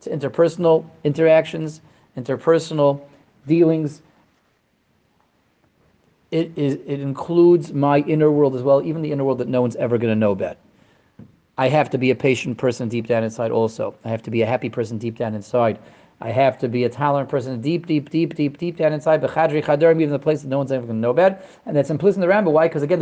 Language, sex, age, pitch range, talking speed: English, male, 30-49, 135-165 Hz, 215 wpm